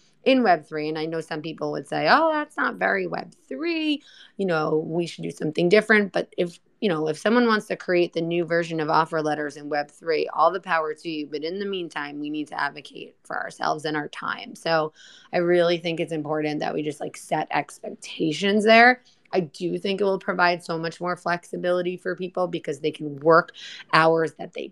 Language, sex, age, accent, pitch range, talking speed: English, female, 20-39, American, 155-185 Hz, 215 wpm